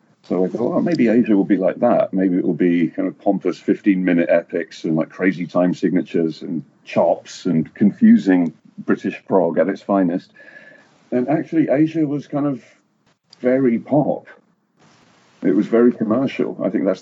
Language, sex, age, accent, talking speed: Finnish, male, 40-59, British, 170 wpm